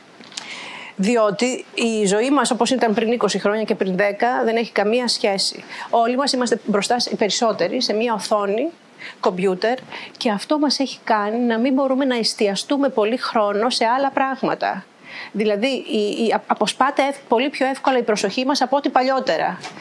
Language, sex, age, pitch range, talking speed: Greek, female, 40-59, 220-275 Hz, 160 wpm